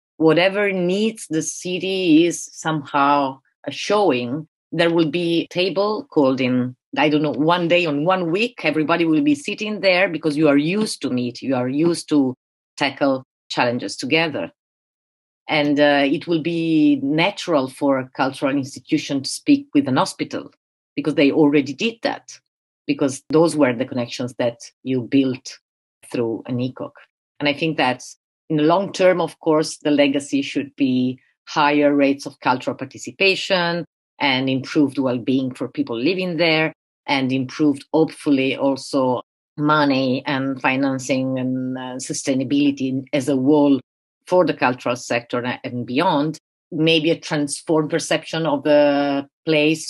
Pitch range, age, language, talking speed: 135-165 Hz, 30-49, English, 150 wpm